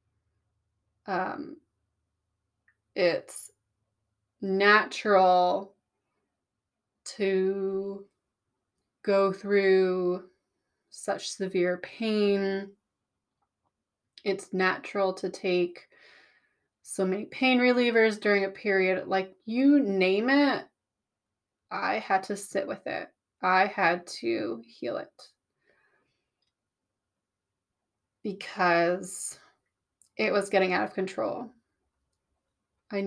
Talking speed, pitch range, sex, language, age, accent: 80 wpm, 165-205 Hz, female, English, 20-39, American